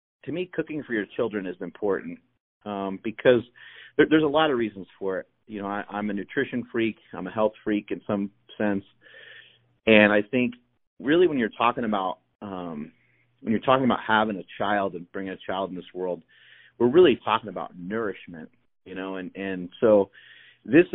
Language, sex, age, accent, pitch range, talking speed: English, male, 40-59, American, 95-110 Hz, 190 wpm